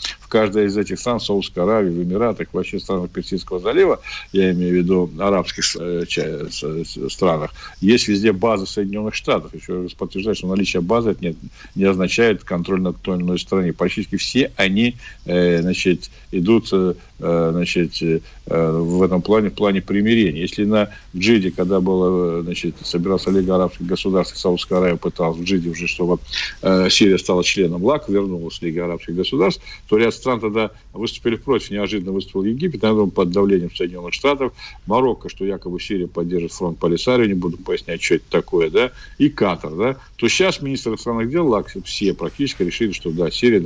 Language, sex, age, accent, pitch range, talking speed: Russian, male, 50-69, native, 85-105 Hz, 165 wpm